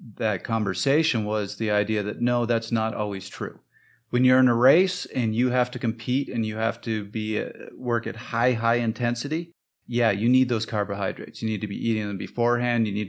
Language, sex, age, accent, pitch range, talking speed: English, male, 30-49, American, 105-120 Hz, 210 wpm